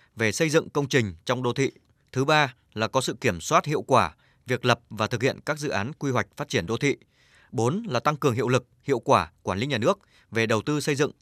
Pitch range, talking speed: 110-145 Hz, 255 wpm